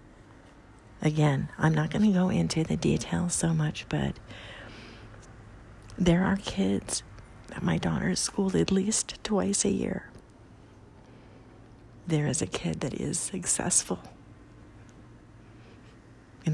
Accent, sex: American, female